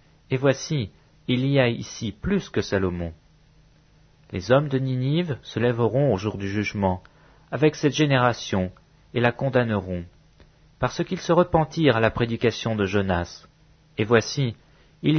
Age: 40-59